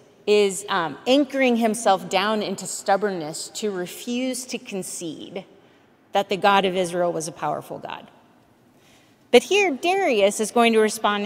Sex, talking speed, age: female, 145 wpm, 30-49